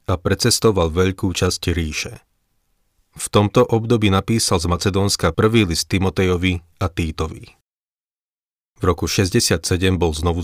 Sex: male